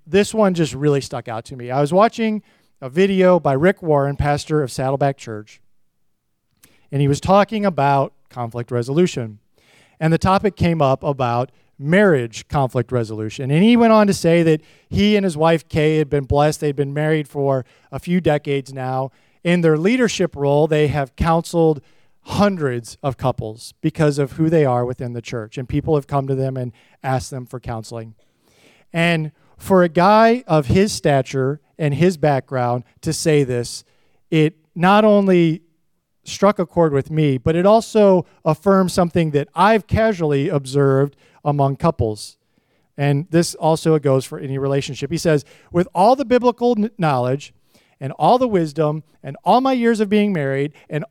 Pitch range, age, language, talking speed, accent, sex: 135-180 Hz, 40-59, English, 170 wpm, American, male